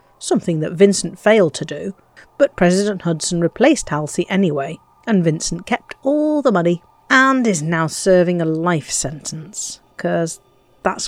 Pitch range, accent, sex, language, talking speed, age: 160-230 Hz, British, female, English, 145 wpm, 50-69